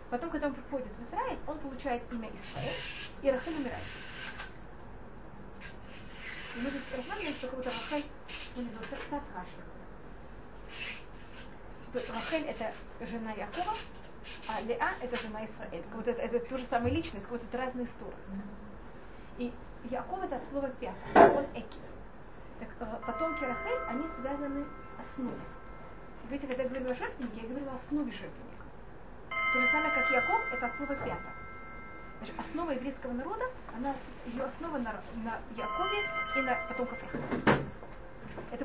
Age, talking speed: 30-49, 140 wpm